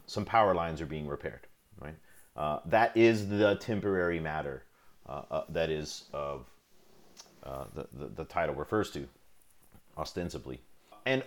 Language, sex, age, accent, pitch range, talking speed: English, male, 30-49, American, 80-110 Hz, 145 wpm